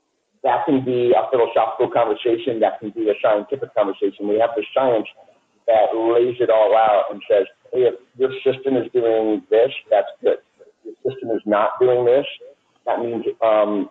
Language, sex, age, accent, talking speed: English, male, 50-69, American, 180 wpm